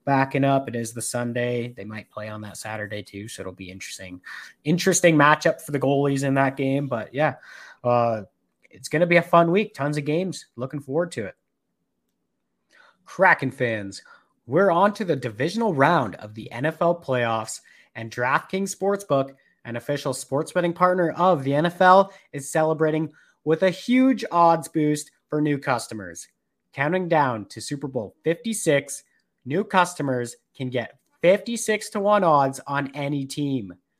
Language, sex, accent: English, male, American